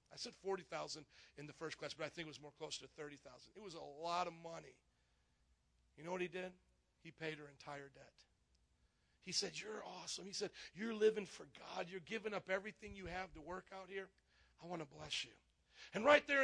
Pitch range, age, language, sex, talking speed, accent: 155-220 Hz, 40-59, English, male, 220 wpm, American